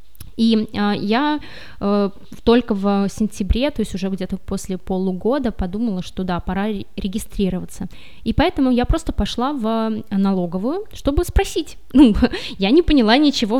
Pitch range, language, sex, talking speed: 195-255 Hz, Russian, female, 140 wpm